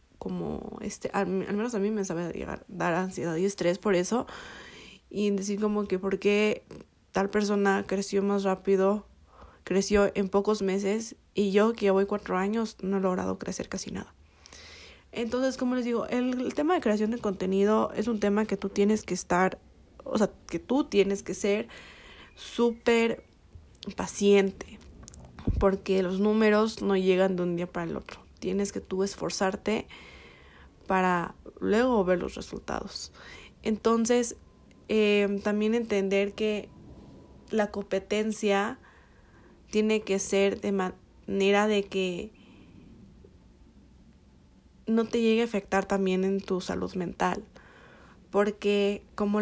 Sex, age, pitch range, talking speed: female, 20-39, 190-215 Hz, 140 wpm